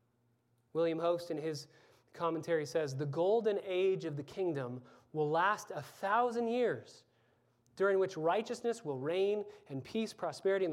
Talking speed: 145 wpm